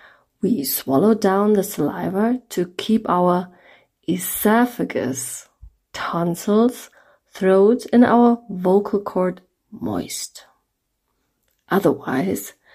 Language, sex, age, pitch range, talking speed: English, female, 30-49, 185-235 Hz, 80 wpm